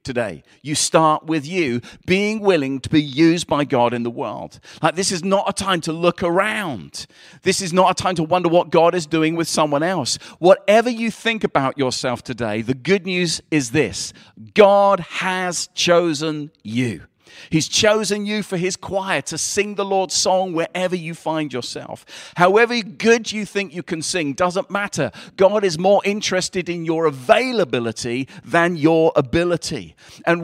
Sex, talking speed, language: male, 175 wpm, English